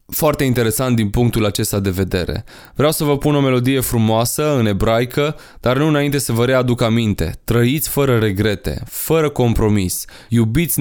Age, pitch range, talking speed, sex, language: 20-39, 110-135 Hz, 160 wpm, male, Romanian